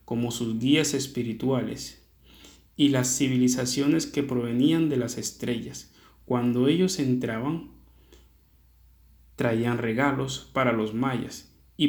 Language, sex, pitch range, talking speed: Spanish, male, 105-140 Hz, 105 wpm